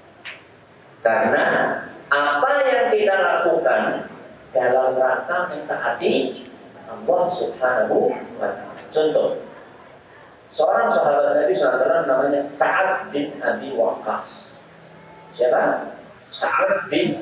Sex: male